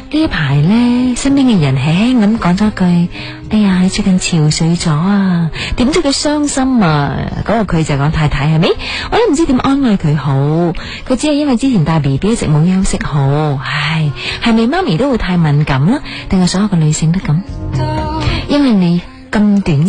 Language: Chinese